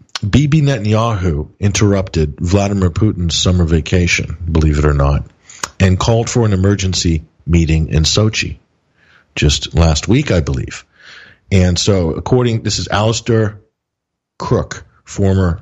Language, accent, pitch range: English, American, 85-110 Hz